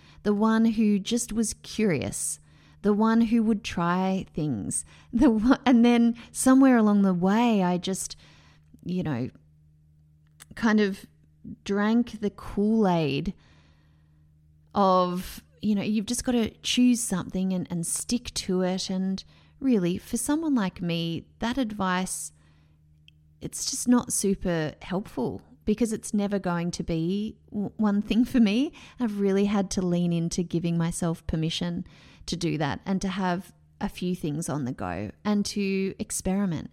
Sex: female